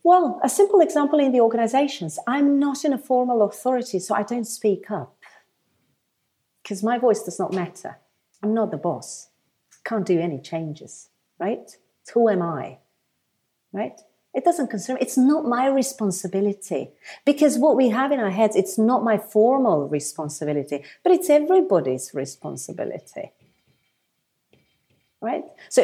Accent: British